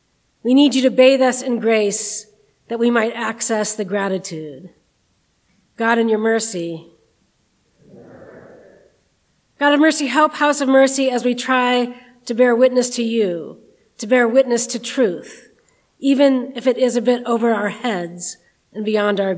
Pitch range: 220-260 Hz